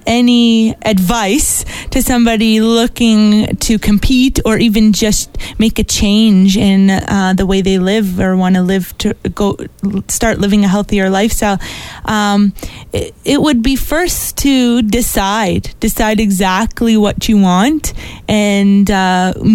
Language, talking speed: English, 140 wpm